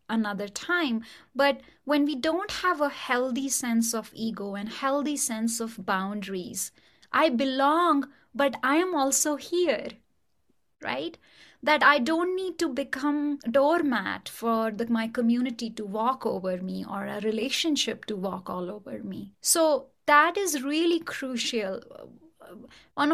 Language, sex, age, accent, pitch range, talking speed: English, female, 20-39, Indian, 220-275 Hz, 145 wpm